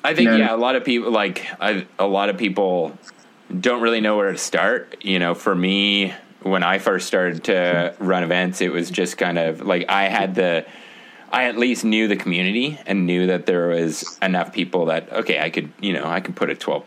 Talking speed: 220 wpm